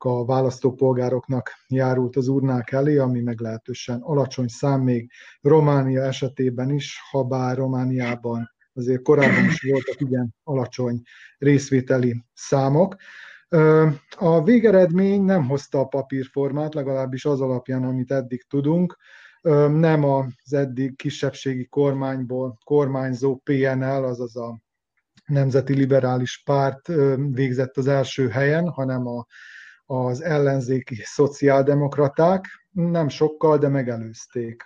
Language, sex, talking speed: Hungarian, male, 105 wpm